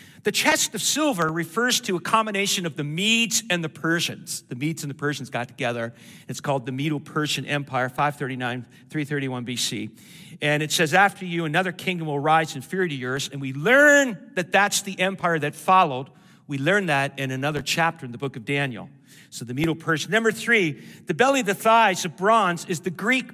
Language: English